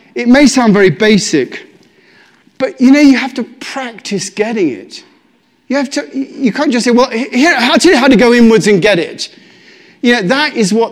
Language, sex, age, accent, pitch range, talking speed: English, male, 40-59, British, 185-250 Hz, 215 wpm